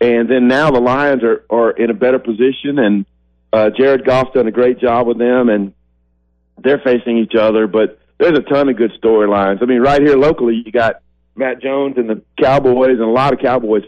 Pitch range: 105-130 Hz